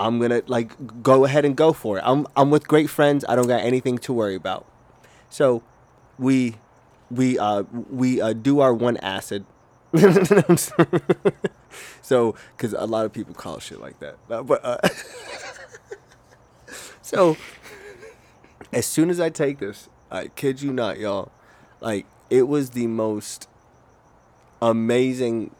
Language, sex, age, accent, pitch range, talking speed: English, male, 20-39, American, 110-135 Hz, 145 wpm